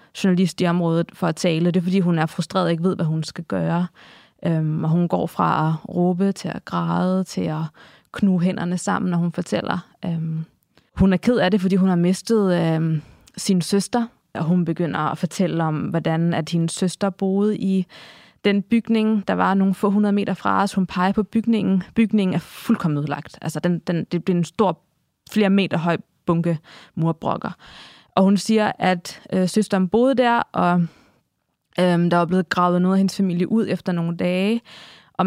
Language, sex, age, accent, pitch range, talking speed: Danish, female, 20-39, native, 175-200 Hz, 195 wpm